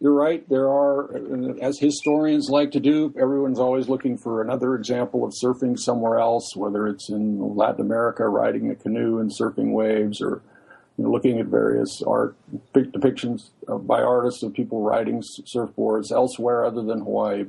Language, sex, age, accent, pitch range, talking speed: English, male, 50-69, American, 110-130 Hz, 160 wpm